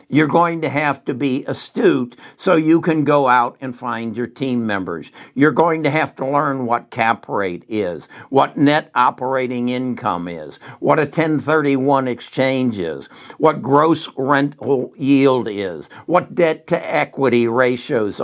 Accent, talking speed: American, 155 wpm